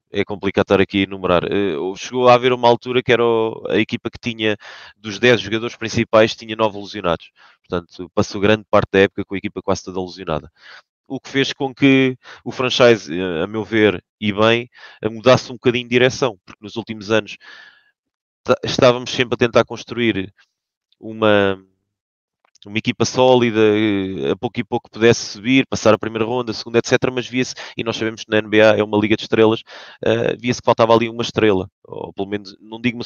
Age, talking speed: 20-39, 190 wpm